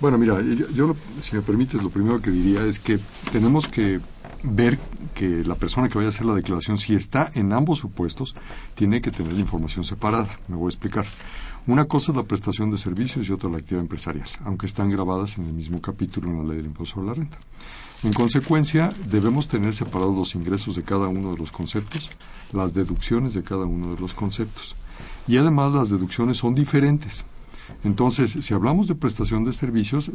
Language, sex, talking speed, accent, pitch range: Spanish, male, 205 wpm, Mexican, 95-125 Hz